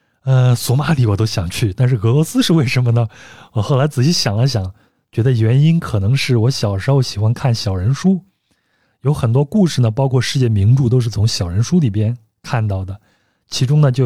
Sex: male